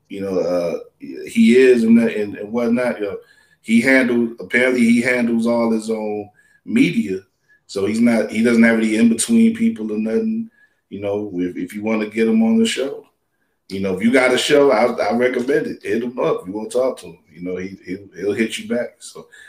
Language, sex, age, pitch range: English, male, 20-39, 95-125 Hz